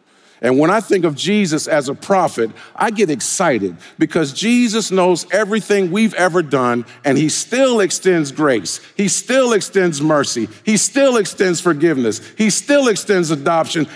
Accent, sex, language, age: American, male, English, 50-69